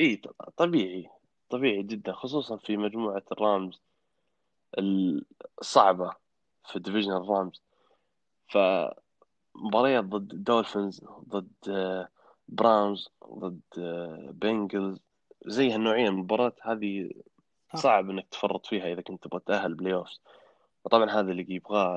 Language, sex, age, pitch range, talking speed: Arabic, male, 20-39, 95-110 Hz, 100 wpm